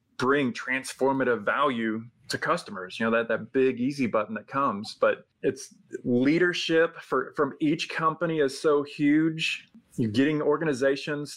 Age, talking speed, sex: 20-39, 140 wpm, male